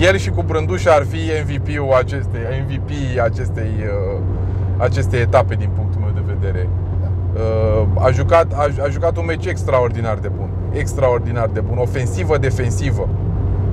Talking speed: 135 wpm